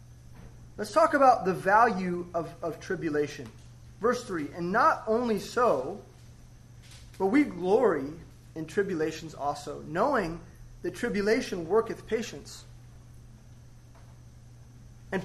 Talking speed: 100 wpm